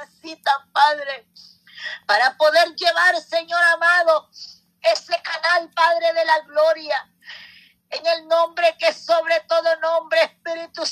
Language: Spanish